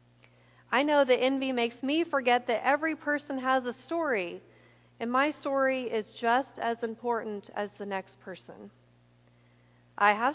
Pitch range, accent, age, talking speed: 170-260 Hz, American, 40-59, 150 wpm